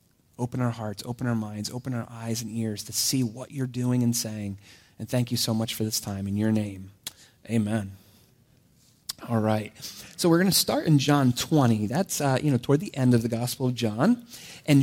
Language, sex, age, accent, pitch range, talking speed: English, male, 30-49, American, 115-150 Hz, 215 wpm